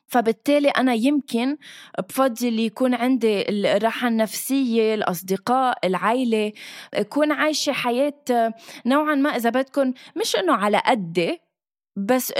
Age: 20-39